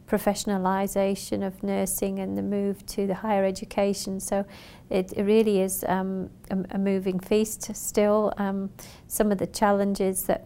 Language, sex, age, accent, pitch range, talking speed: English, female, 40-59, British, 190-205 Hz, 150 wpm